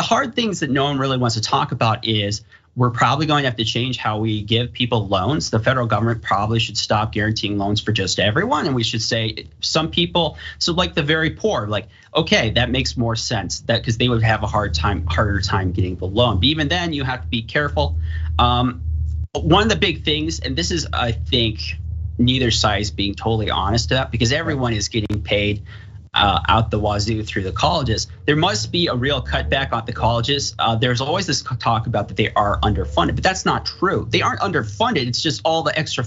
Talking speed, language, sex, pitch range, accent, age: 225 wpm, English, male, 105-130 Hz, American, 30-49